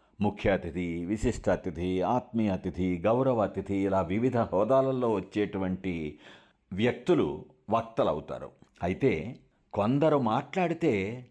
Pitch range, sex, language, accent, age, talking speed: 95-135 Hz, male, Telugu, native, 60-79, 95 wpm